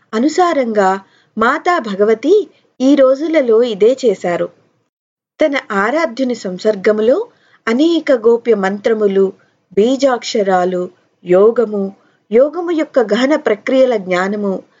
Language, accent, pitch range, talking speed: Telugu, native, 200-275 Hz, 80 wpm